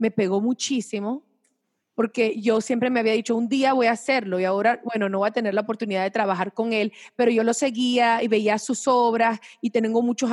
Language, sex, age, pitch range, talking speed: English, female, 40-59, 230-290 Hz, 220 wpm